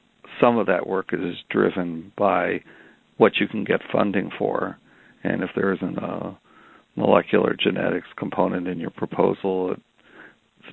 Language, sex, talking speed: English, male, 140 wpm